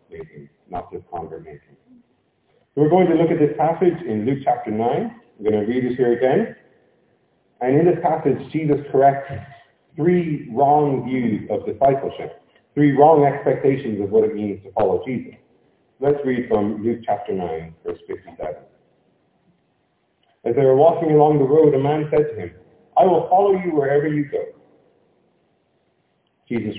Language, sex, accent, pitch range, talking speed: English, male, American, 125-185 Hz, 160 wpm